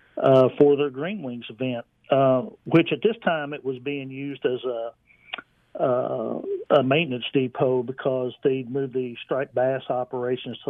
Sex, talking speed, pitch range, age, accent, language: male, 165 wpm, 130-145 Hz, 50-69, American, English